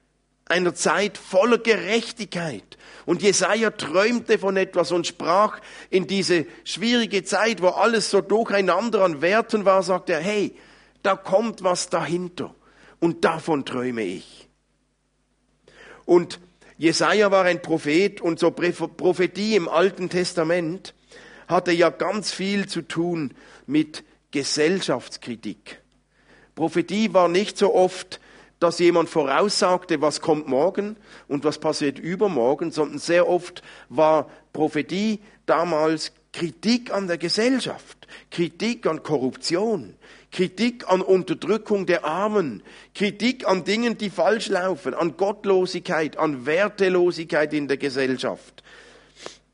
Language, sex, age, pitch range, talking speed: German, male, 50-69, 155-200 Hz, 120 wpm